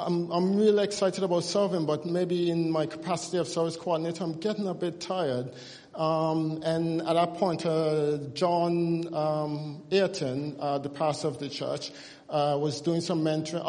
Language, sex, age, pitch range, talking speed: English, male, 50-69, 155-180 Hz, 170 wpm